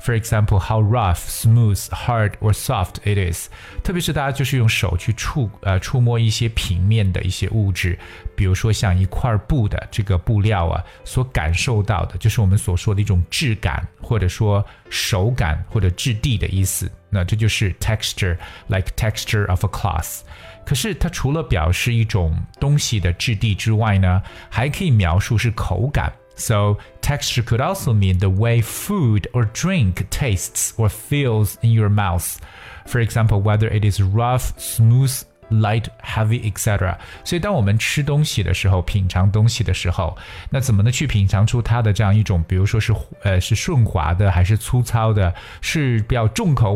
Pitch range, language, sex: 95-115 Hz, Chinese, male